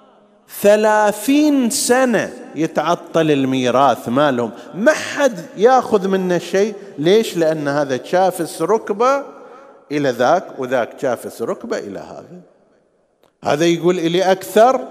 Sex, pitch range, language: male, 185-250 Hz, Arabic